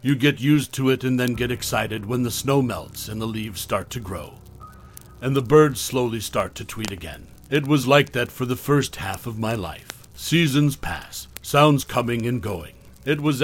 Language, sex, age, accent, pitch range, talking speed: English, male, 60-79, American, 105-135 Hz, 205 wpm